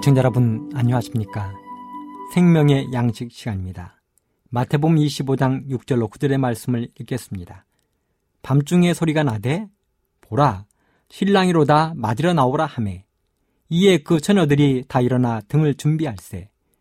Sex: male